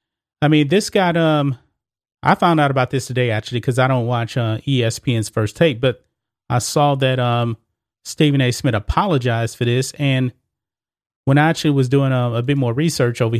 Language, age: English, 30-49